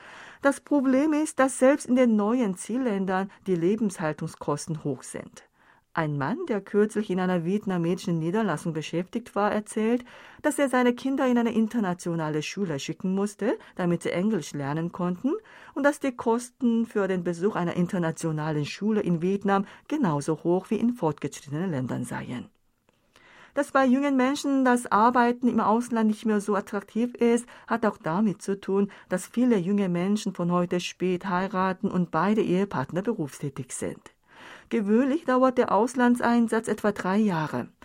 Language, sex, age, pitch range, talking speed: German, female, 40-59, 175-235 Hz, 150 wpm